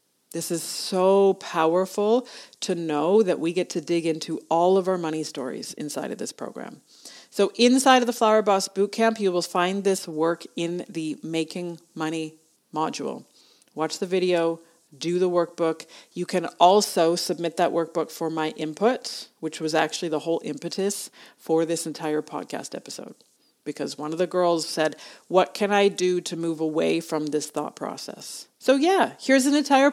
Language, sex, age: English, female, 40-59